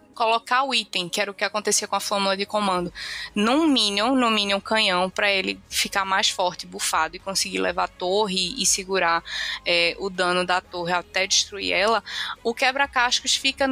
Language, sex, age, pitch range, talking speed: Portuguese, female, 20-39, 195-245 Hz, 190 wpm